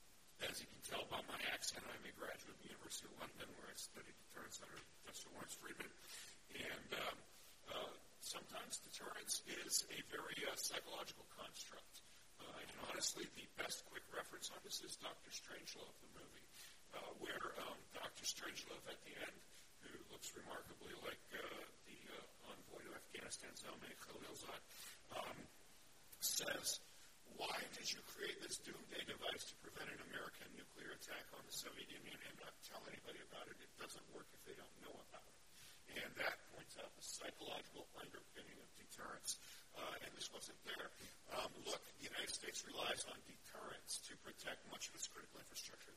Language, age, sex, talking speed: English, 60-79, male, 170 wpm